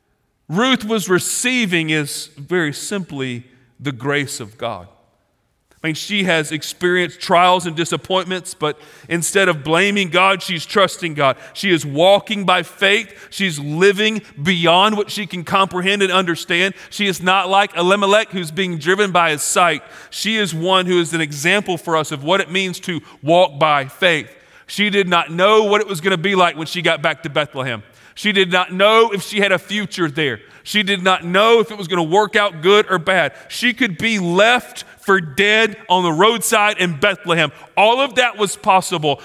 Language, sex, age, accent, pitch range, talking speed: English, male, 40-59, American, 145-195 Hz, 190 wpm